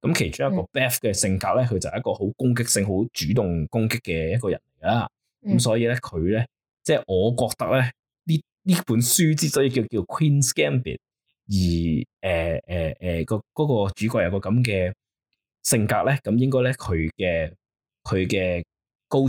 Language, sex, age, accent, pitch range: Chinese, male, 20-39, native, 95-130 Hz